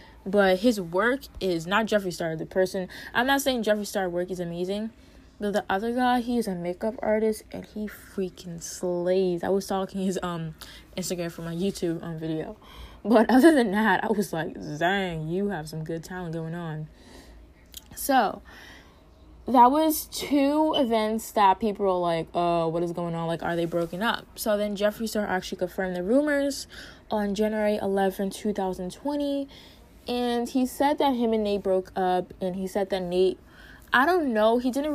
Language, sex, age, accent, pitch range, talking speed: English, female, 20-39, American, 175-210 Hz, 180 wpm